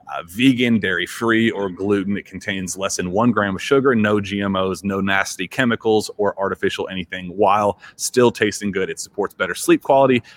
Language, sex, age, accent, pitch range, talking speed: English, male, 30-49, American, 95-110 Hz, 175 wpm